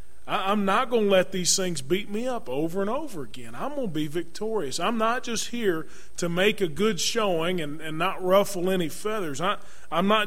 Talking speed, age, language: 215 wpm, 30-49, English